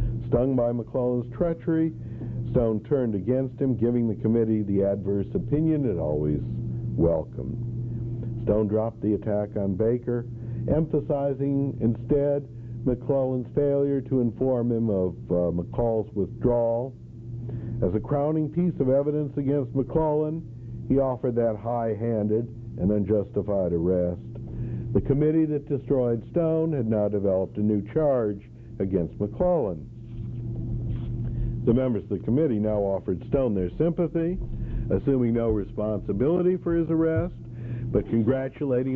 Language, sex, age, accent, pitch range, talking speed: English, male, 60-79, American, 110-140 Hz, 125 wpm